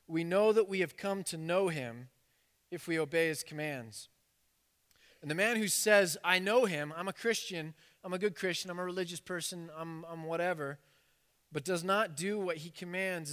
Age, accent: 30-49, American